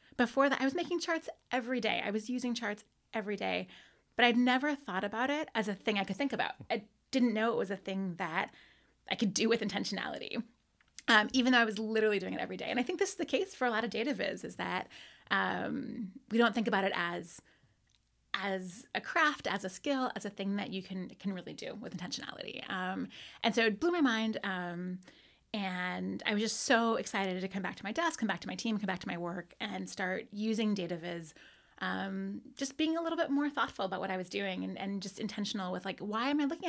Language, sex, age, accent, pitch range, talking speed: English, female, 30-49, American, 195-245 Hz, 240 wpm